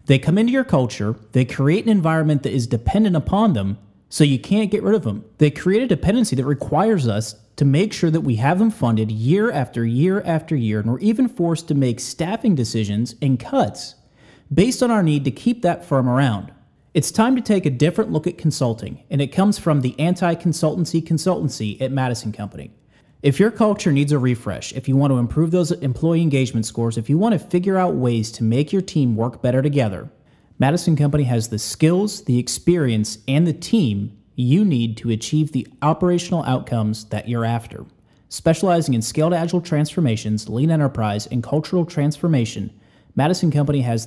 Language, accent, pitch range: English, American, 115-170 Hz